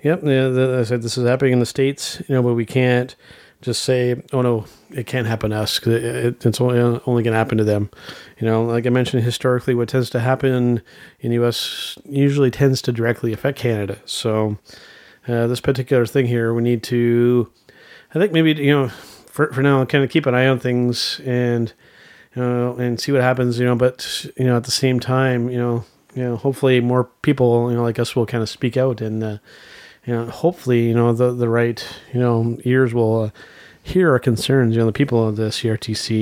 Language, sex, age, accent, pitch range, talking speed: English, male, 30-49, American, 115-130 Hz, 225 wpm